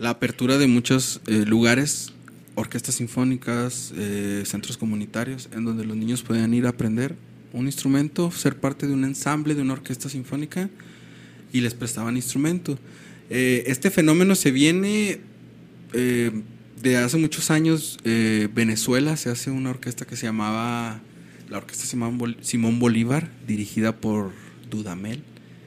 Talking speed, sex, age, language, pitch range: 140 wpm, male, 30-49, Spanish, 110-135 Hz